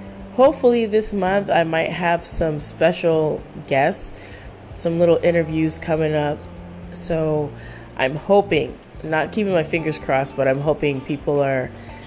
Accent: American